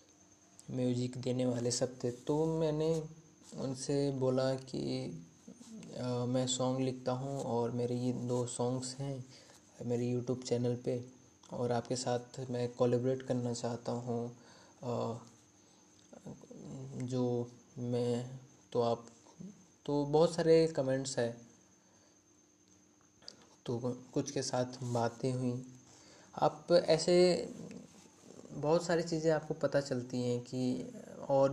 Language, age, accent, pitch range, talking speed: Hindi, 20-39, native, 120-135 Hz, 110 wpm